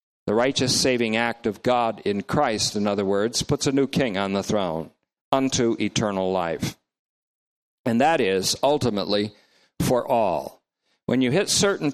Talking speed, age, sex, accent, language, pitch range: 155 wpm, 50-69, male, American, English, 105-135 Hz